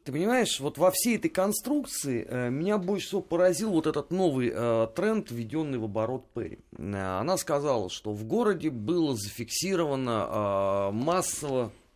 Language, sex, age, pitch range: Russian, male, 30-49, 110-160 Hz